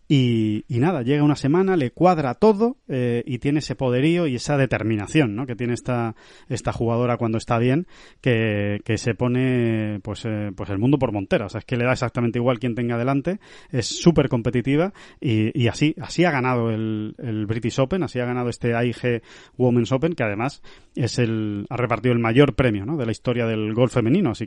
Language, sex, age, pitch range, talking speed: Spanish, male, 30-49, 120-150 Hz, 210 wpm